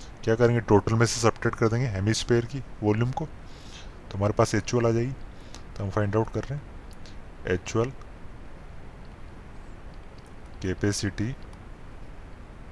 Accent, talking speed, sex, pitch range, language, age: native, 125 wpm, male, 95-110 Hz, Hindi, 20-39